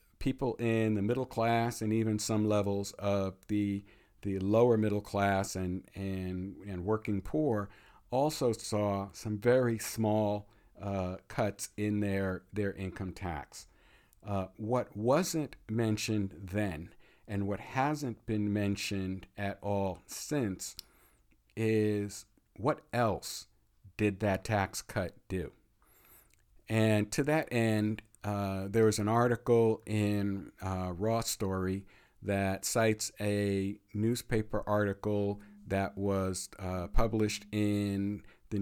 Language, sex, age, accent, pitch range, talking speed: English, male, 50-69, American, 100-110 Hz, 120 wpm